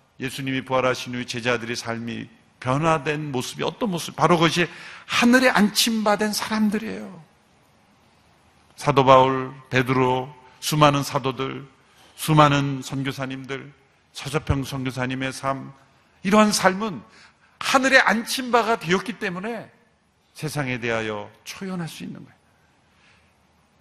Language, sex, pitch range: Korean, male, 130-185 Hz